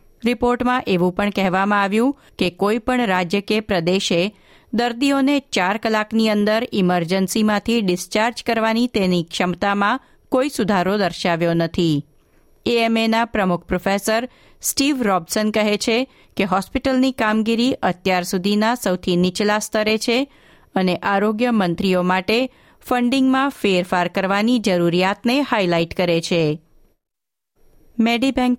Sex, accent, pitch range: female, native, 180-230 Hz